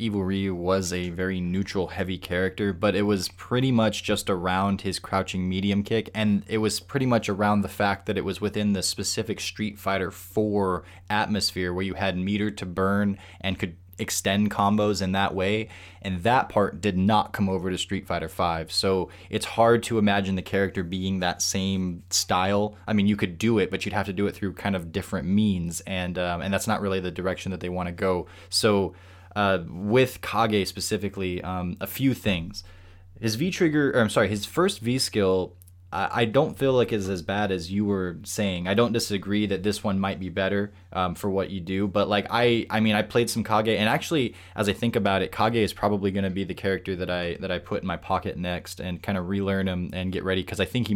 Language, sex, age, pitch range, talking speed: English, male, 20-39, 90-105 Hz, 225 wpm